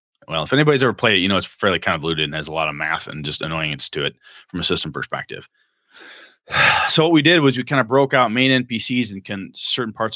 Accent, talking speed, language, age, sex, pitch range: American, 255 wpm, English, 30-49, male, 95-125 Hz